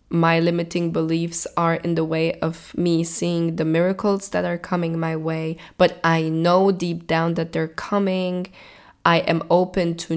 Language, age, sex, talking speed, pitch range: English, 10-29, female, 170 wpm, 165-190 Hz